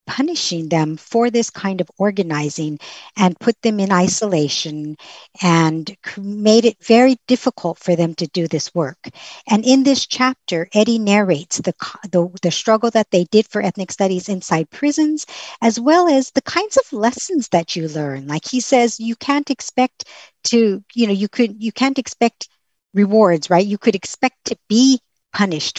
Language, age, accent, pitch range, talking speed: English, 50-69, American, 180-235 Hz, 170 wpm